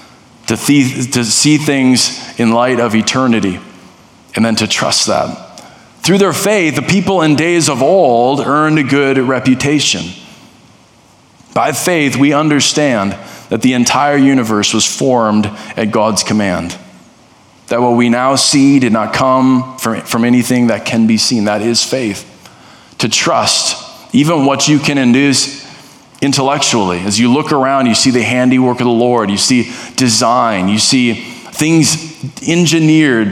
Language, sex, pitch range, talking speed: English, male, 115-145 Hz, 150 wpm